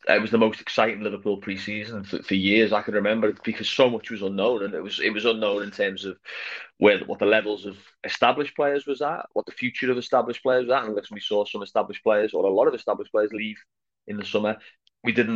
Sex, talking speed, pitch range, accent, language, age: male, 240 wpm, 105-120 Hz, British, English, 20-39